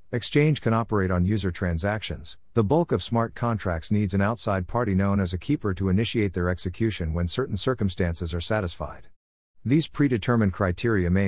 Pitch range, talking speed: 90-115 Hz, 170 wpm